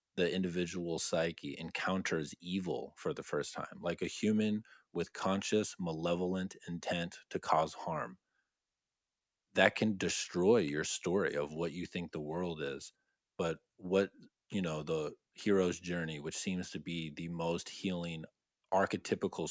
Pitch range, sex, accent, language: 85-100 Hz, male, American, English